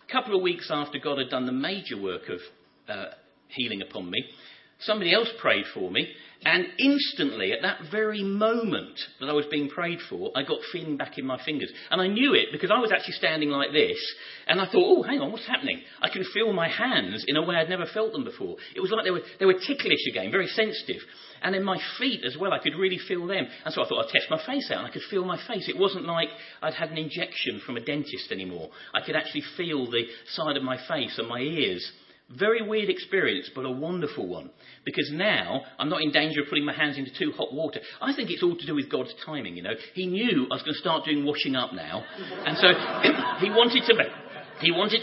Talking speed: 240 wpm